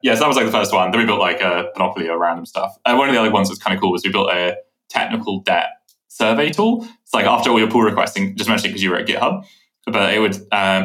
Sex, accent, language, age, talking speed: male, British, English, 20-39, 305 wpm